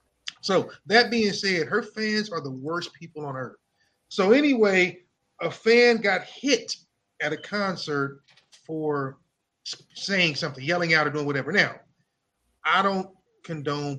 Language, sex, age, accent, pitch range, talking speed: English, male, 30-49, American, 145-190 Hz, 140 wpm